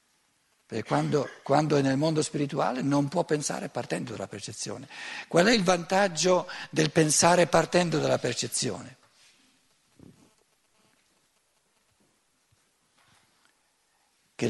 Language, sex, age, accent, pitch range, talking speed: Italian, male, 60-79, native, 140-175 Hz, 90 wpm